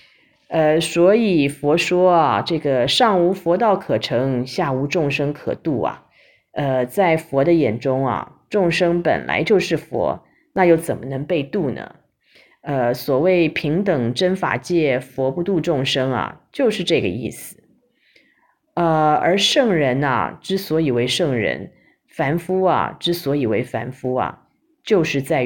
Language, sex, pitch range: Chinese, female, 135-180 Hz